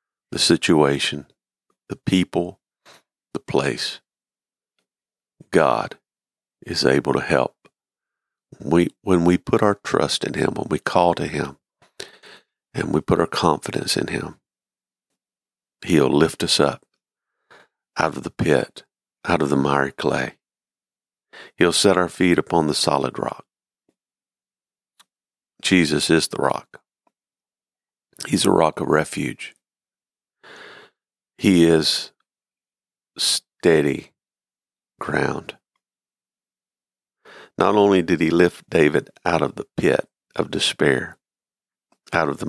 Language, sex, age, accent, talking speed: English, male, 50-69, American, 115 wpm